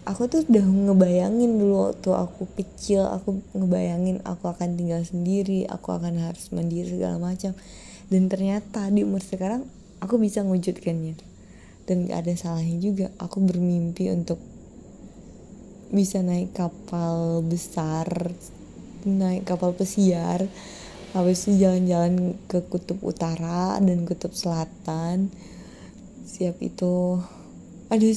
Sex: female